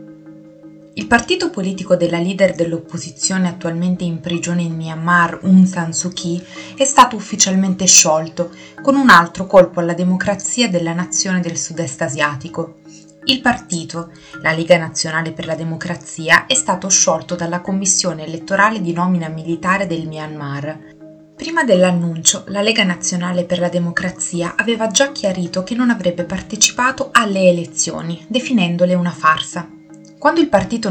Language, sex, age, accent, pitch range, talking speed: Italian, female, 20-39, native, 165-195 Hz, 140 wpm